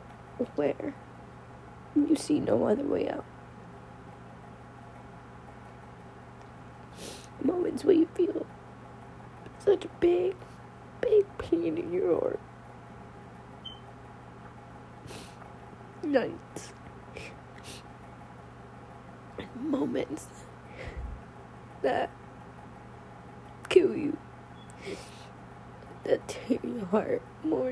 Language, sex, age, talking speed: English, female, 20-39, 65 wpm